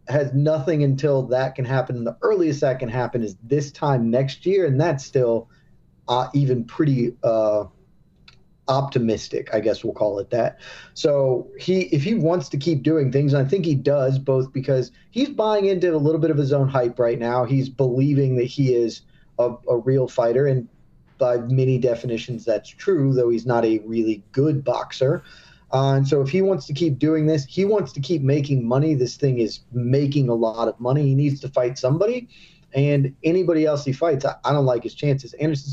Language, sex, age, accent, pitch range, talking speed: English, male, 30-49, American, 125-145 Hz, 205 wpm